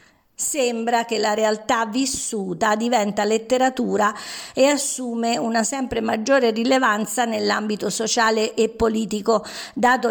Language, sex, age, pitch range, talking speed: Italian, female, 50-69, 210-260 Hz, 105 wpm